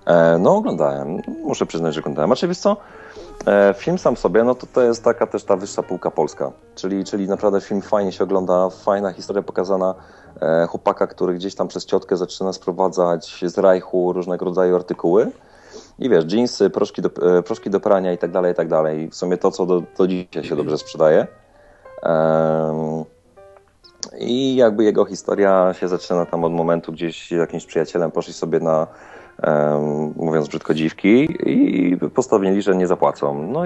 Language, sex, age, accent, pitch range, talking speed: Polish, male, 30-49, native, 80-95 Hz, 175 wpm